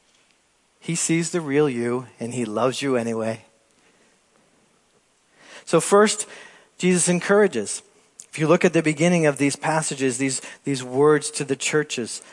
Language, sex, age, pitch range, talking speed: English, male, 40-59, 150-205 Hz, 140 wpm